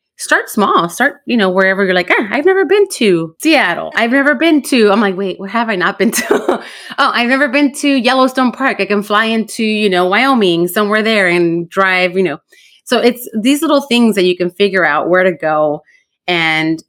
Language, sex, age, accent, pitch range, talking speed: English, female, 30-49, American, 180-235 Hz, 215 wpm